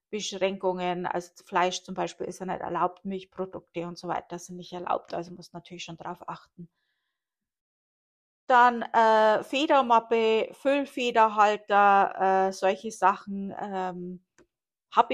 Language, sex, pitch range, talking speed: German, female, 195-255 Hz, 125 wpm